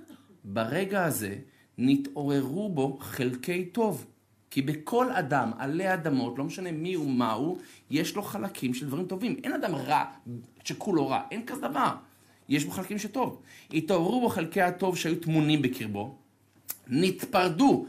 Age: 50-69